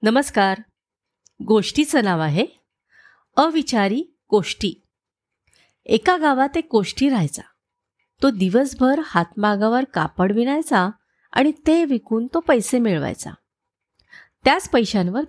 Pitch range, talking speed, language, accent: 185-275 Hz, 95 wpm, Marathi, native